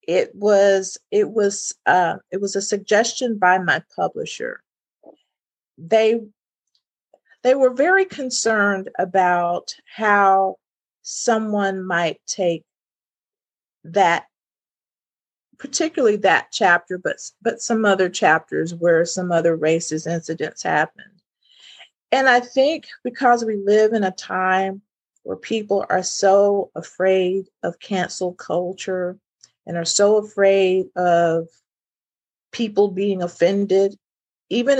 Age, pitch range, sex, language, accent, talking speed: 40-59, 175-220 Hz, female, English, American, 110 wpm